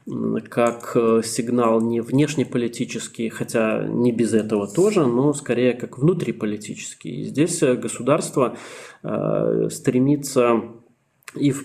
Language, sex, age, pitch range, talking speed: Russian, male, 20-39, 115-135 Hz, 90 wpm